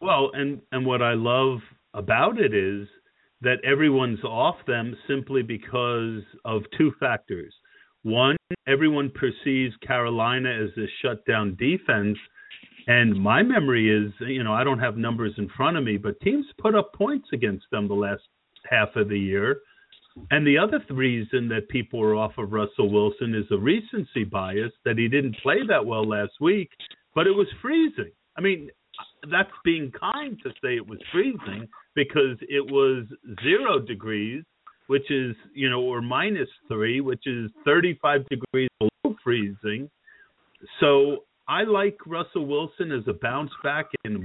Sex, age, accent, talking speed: male, 50-69, American, 160 wpm